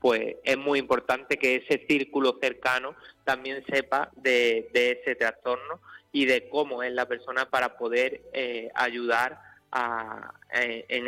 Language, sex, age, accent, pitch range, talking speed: Spanish, male, 30-49, Spanish, 115-145 Hz, 145 wpm